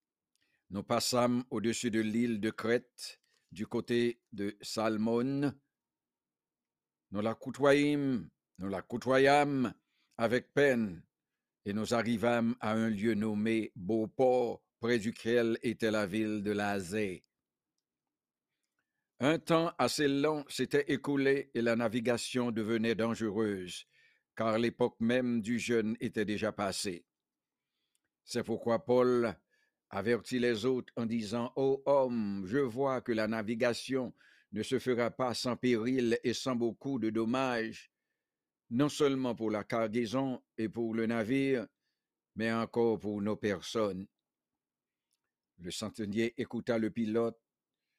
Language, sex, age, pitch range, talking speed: English, male, 60-79, 110-130 Hz, 120 wpm